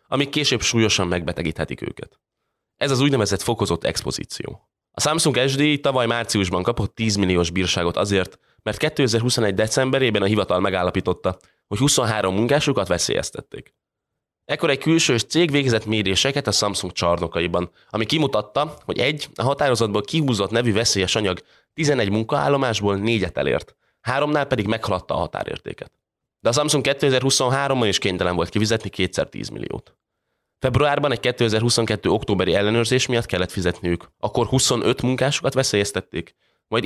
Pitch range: 95-135 Hz